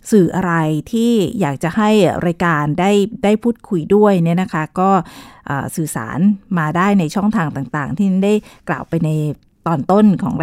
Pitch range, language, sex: 165-210 Hz, Thai, female